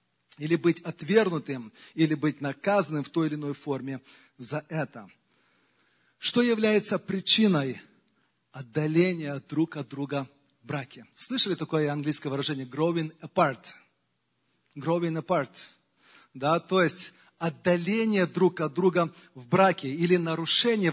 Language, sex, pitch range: Russian, male, 155-215 Hz